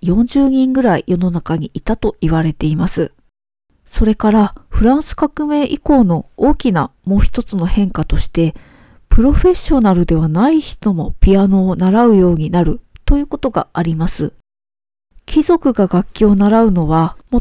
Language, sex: Japanese, female